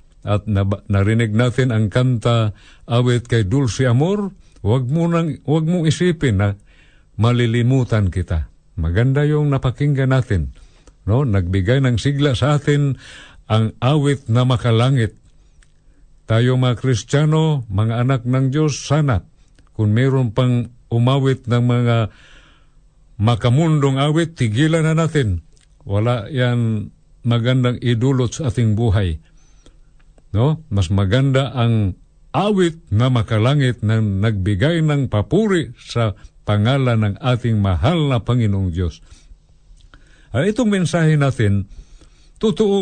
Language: Filipino